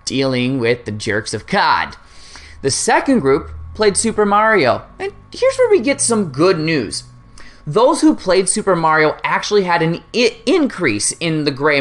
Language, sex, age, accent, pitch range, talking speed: English, male, 20-39, American, 135-215 Hz, 165 wpm